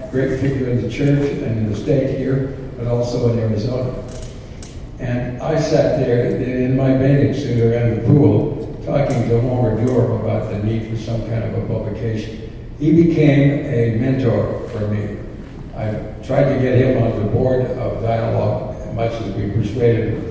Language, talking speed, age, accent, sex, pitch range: English, 170 wpm, 60-79, American, male, 110-125 Hz